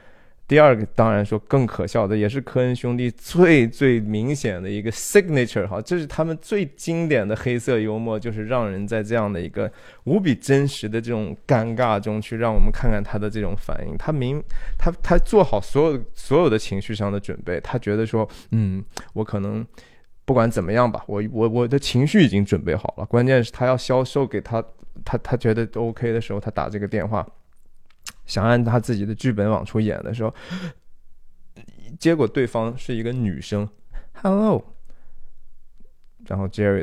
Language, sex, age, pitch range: Chinese, male, 20-39, 105-145 Hz